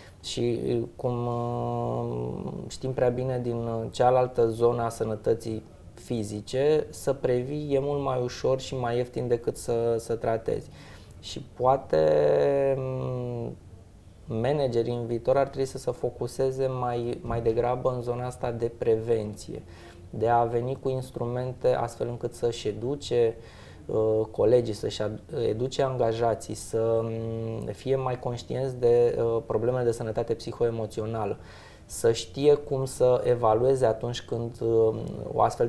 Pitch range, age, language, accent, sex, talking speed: 110-130 Hz, 20-39, Romanian, native, male, 125 wpm